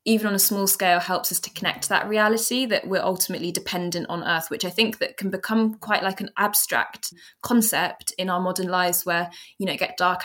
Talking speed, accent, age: 230 wpm, British, 20-39